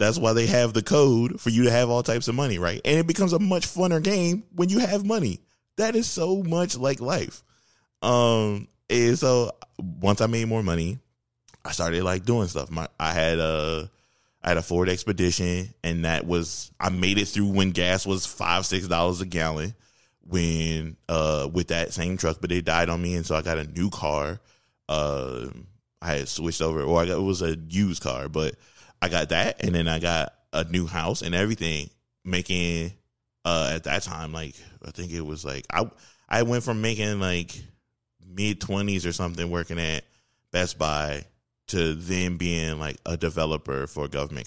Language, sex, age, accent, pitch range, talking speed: English, male, 20-39, American, 80-110 Hz, 195 wpm